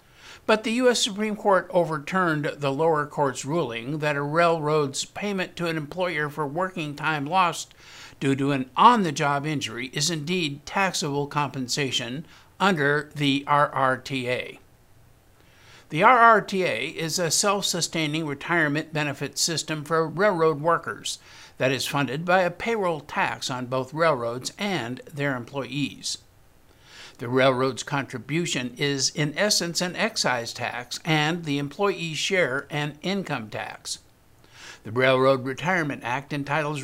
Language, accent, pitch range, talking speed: English, American, 135-170 Hz, 125 wpm